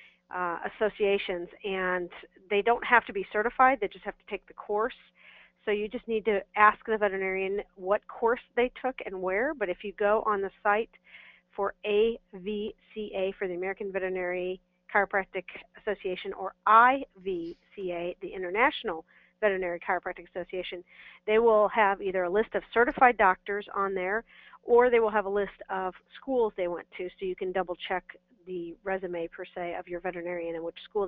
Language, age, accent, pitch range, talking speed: English, 40-59, American, 180-210 Hz, 170 wpm